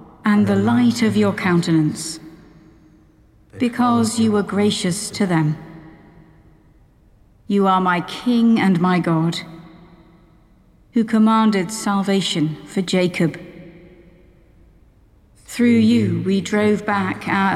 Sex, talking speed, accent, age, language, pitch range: female, 105 wpm, British, 50-69, English, 170-210 Hz